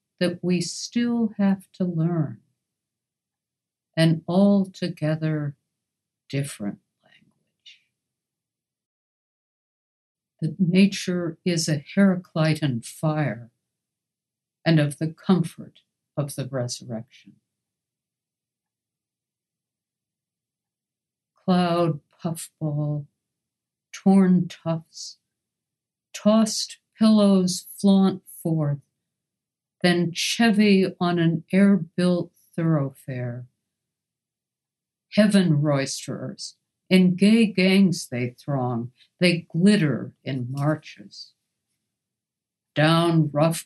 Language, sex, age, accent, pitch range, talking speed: English, female, 60-79, American, 145-185 Hz, 70 wpm